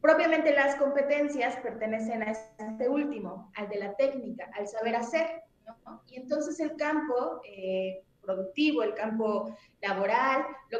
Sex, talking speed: female, 140 wpm